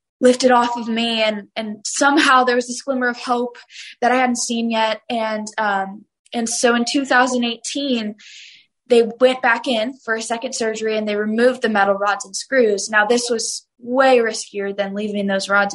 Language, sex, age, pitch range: English, female, 10-29, 205-250 Hz